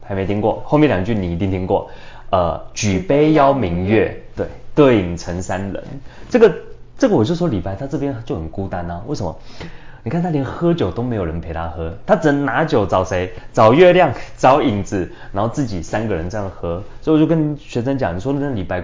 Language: Chinese